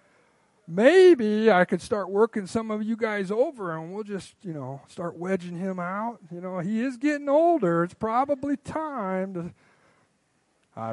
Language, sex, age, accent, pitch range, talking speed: English, male, 50-69, American, 125-205 Hz, 165 wpm